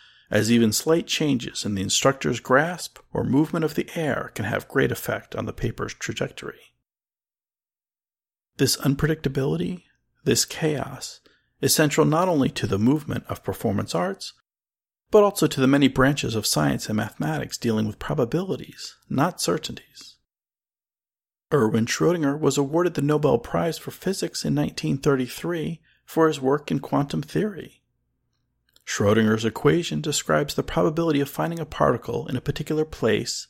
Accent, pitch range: American, 115-155 Hz